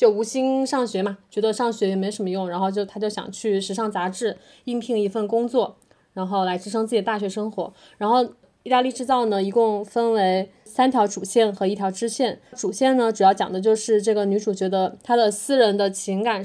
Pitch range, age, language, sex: 195-250 Hz, 20-39, Chinese, female